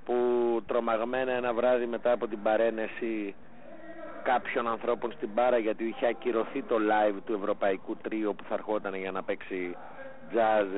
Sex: male